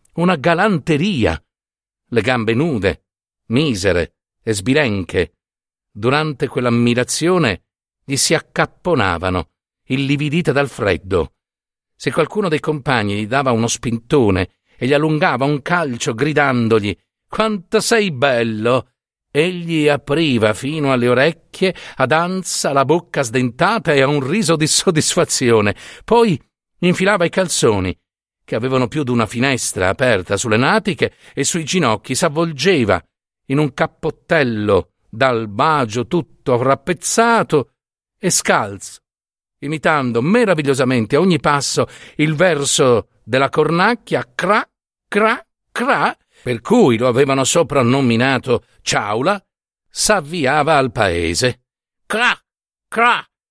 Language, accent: Italian, native